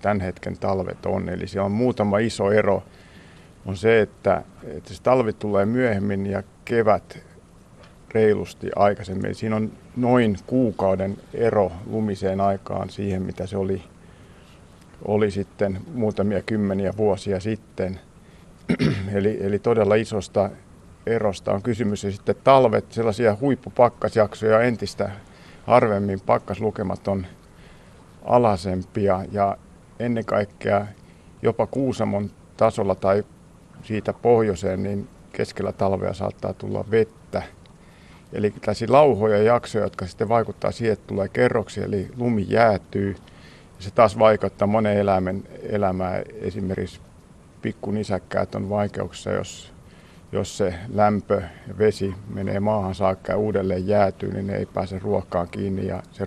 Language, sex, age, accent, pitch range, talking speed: Finnish, male, 50-69, native, 95-110 Hz, 125 wpm